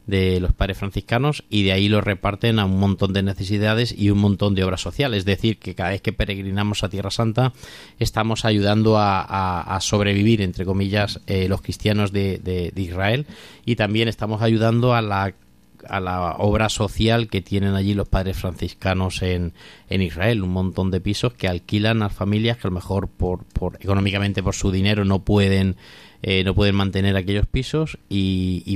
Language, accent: Spanish, Spanish